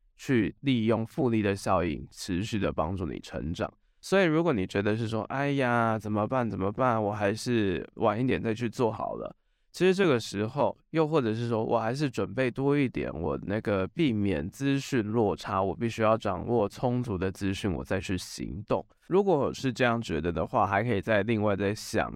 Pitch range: 95-115 Hz